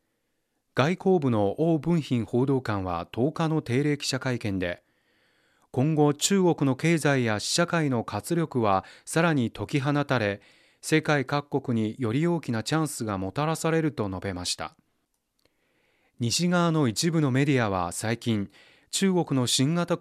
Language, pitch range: Japanese, 110-155 Hz